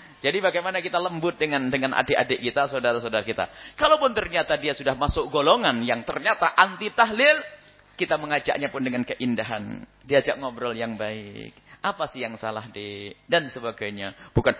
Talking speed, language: 150 wpm, English